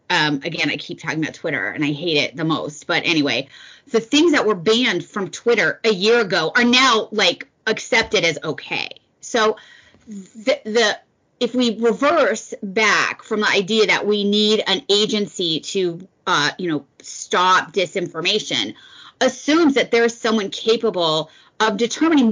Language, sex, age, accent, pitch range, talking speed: English, female, 30-49, American, 190-245 Hz, 160 wpm